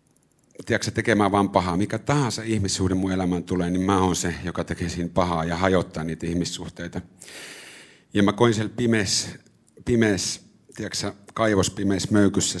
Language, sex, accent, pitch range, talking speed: Finnish, male, native, 90-115 Hz, 135 wpm